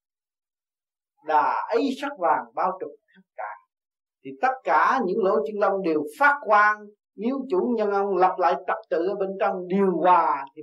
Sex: male